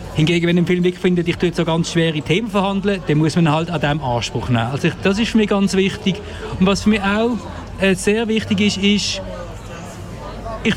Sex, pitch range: male, 165-215 Hz